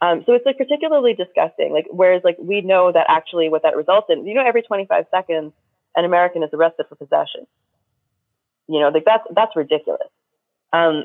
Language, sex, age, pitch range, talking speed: English, female, 20-39, 155-210 Hz, 190 wpm